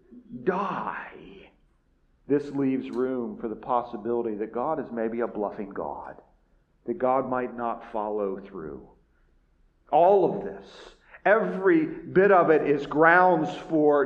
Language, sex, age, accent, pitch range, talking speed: English, male, 40-59, American, 150-245 Hz, 130 wpm